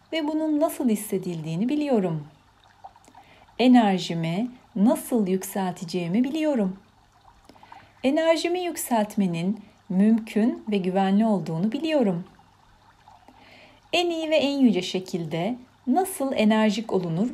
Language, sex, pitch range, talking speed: Turkish, female, 185-280 Hz, 85 wpm